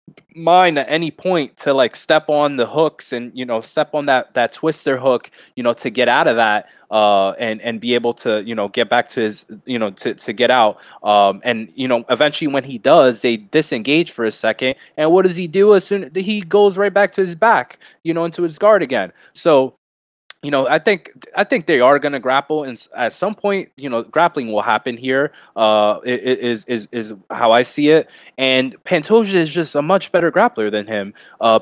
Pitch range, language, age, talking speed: 115-155 Hz, English, 20-39, 225 wpm